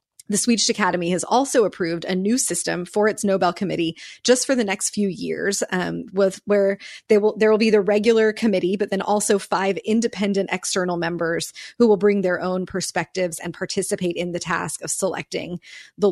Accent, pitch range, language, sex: American, 175-215 Hz, English, female